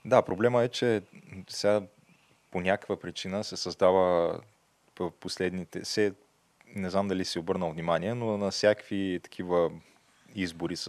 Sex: male